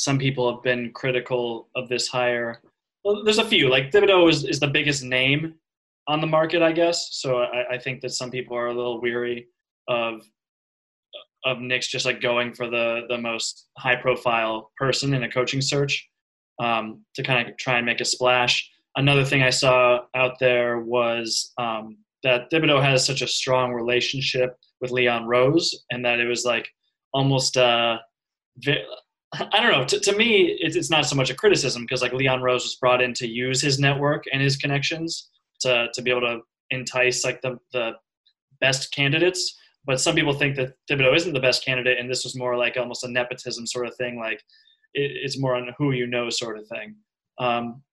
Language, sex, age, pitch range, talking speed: English, male, 20-39, 120-145 Hz, 200 wpm